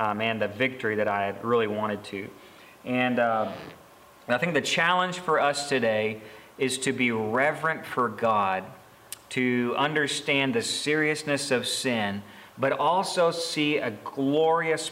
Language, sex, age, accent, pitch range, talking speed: English, male, 40-59, American, 120-150 Hz, 140 wpm